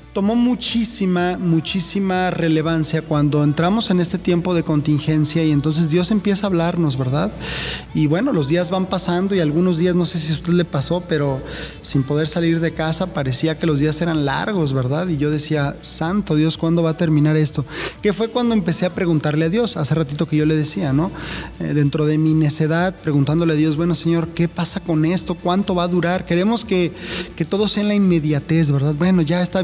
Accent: Mexican